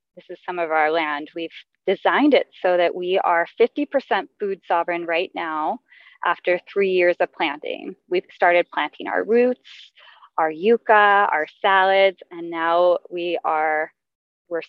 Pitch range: 175-230 Hz